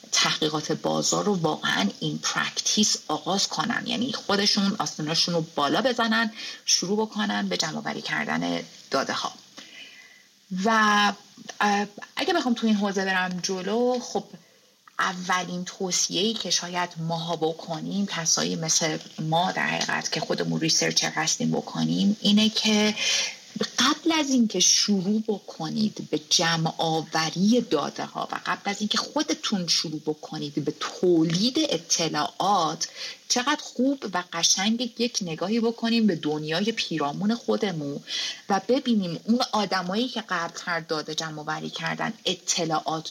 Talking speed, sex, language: 130 wpm, female, Persian